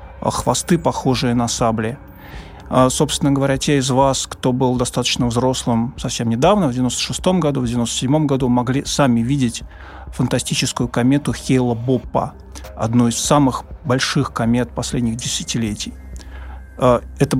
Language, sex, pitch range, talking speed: Russian, male, 115-135 Hz, 120 wpm